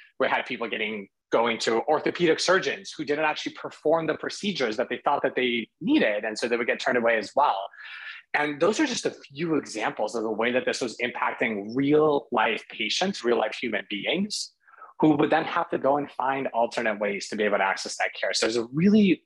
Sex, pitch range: male, 110-175 Hz